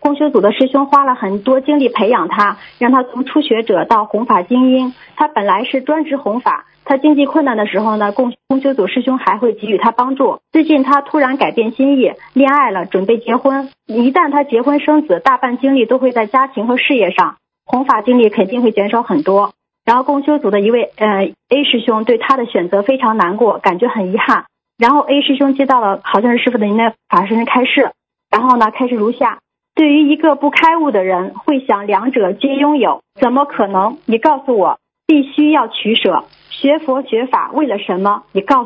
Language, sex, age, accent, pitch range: Chinese, female, 30-49, native, 225-290 Hz